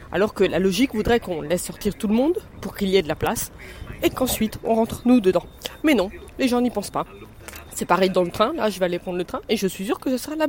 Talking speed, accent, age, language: 290 wpm, French, 20-39, French